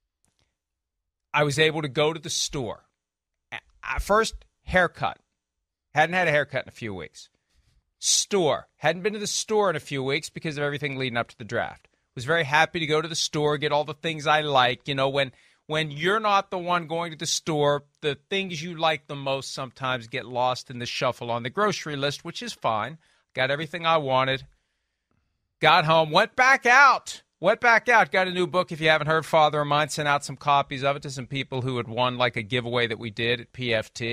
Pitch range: 125-170 Hz